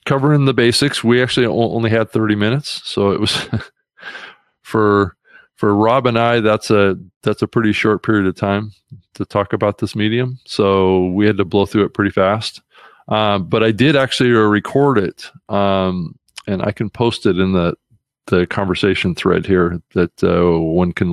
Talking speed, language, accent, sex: 180 wpm, English, American, male